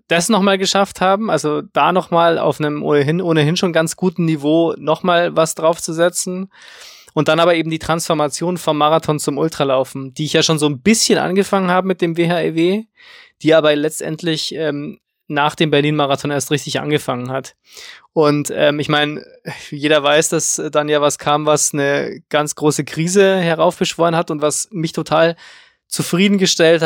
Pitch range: 145-170 Hz